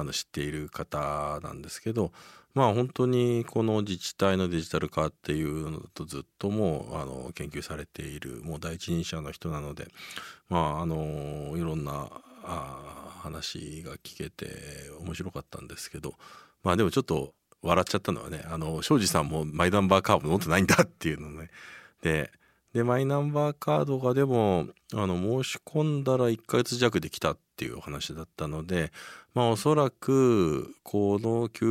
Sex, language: male, Japanese